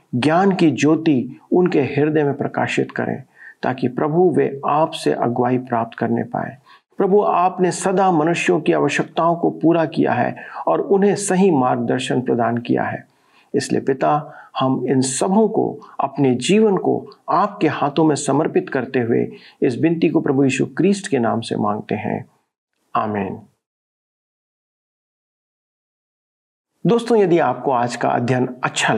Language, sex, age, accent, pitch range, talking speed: Hindi, male, 50-69, native, 130-185 Hz, 140 wpm